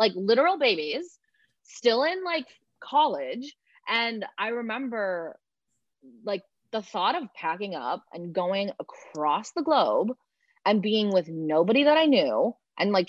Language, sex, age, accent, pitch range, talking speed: English, female, 20-39, American, 170-230 Hz, 140 wpm